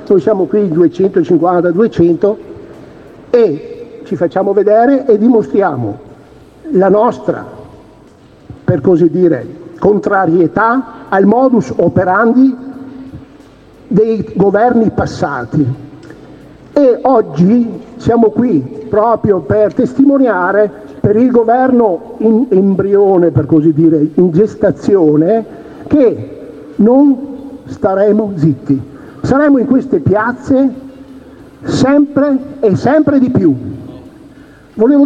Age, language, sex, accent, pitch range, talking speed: 50-69, Italian, male, native, 175-255 Hz, 90 wpm